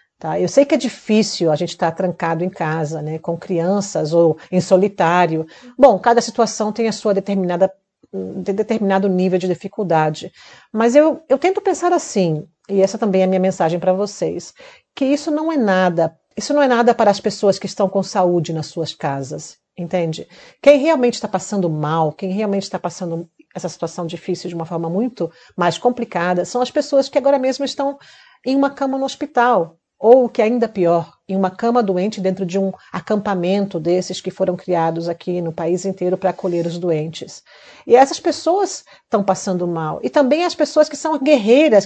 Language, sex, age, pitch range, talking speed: English, female, 50-69, 175-230 Hz, 190 wpm